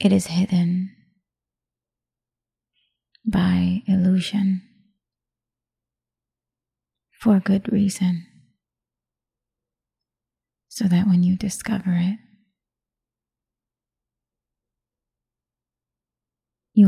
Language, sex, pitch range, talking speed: English, female, 175-200 Hz, 55 wpm